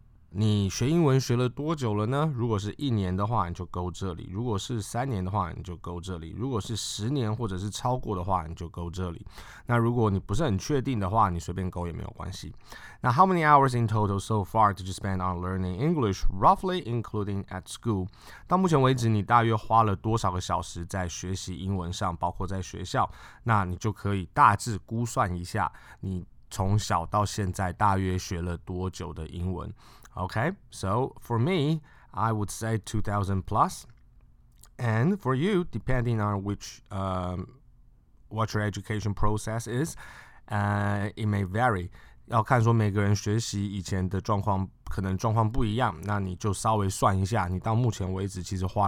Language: Chinese